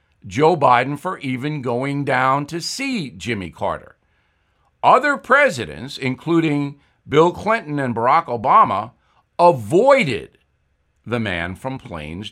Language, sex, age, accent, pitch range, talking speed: English, male, 60-79, American, 115-170 Hz, 110 wpm